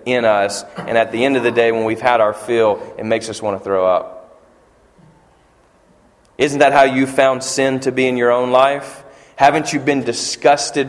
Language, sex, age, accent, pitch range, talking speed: English, male, 30-49, American, 120-150 Hz, 205 wpm